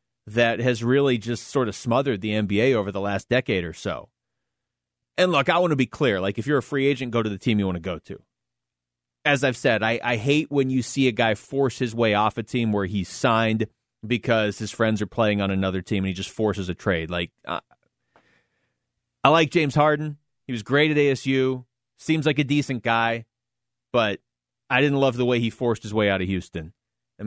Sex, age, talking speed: male, 30-49, 220 wpm